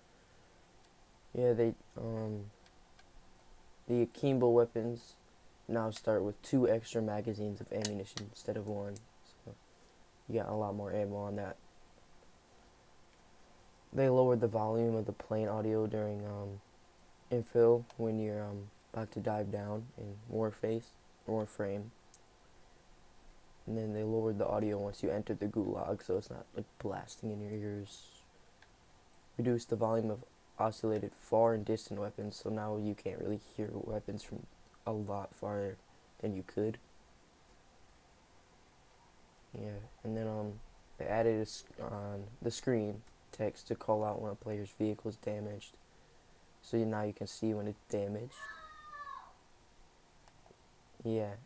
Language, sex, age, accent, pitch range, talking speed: English, male, 20-39, American, 105-115 Hz, 140 wpm